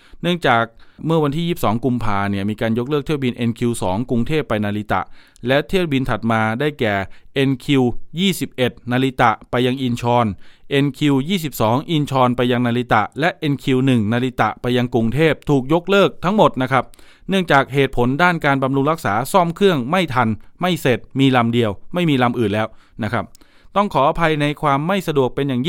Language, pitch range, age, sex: Thai, 120-160 Hz, 20-39, male